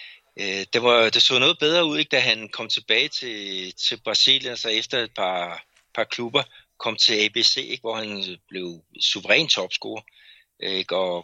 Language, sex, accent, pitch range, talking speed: Danish, male, native, 95-125 Hz, 170 wpm